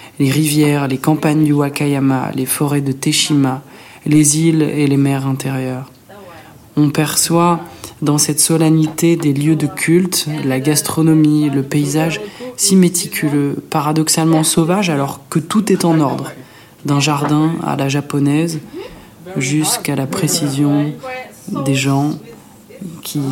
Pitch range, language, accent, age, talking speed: 140-160 Hz, French, French, 20-39, 130 wpm